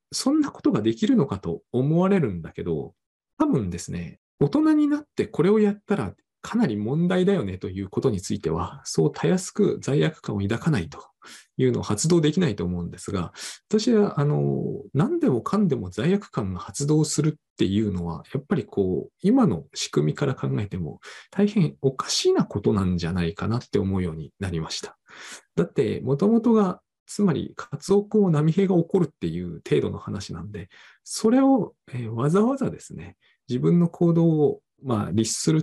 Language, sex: Japanese, male